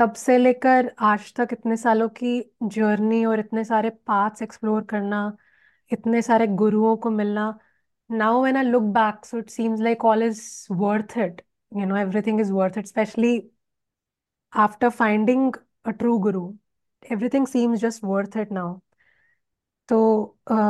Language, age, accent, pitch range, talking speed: Hindi, 20-39, native, 215-260 Hz, 155 wpm